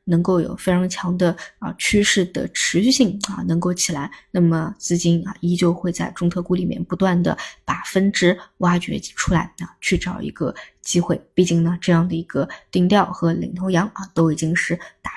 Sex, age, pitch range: female, 20-39, 165-185 Hz